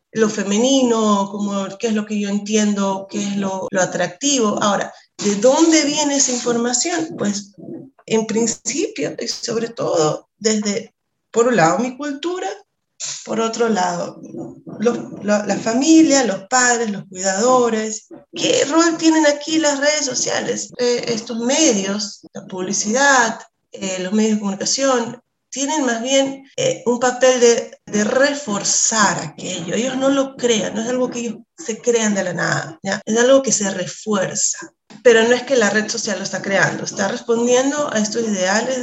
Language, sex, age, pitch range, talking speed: Spanish, female, 30-49, 200-260 Hz, 160 wpm